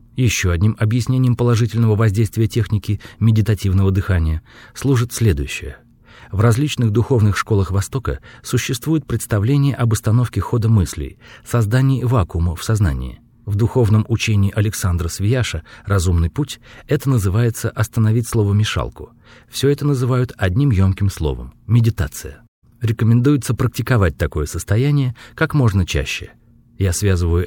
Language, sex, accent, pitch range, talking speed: Russian, male, native, 95-125 Hz, 115 wpm